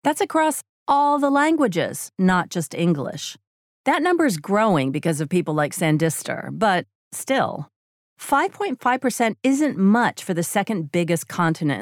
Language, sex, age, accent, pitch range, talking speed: English, female, 40-59, American, 165-255 Hz, 135 wpm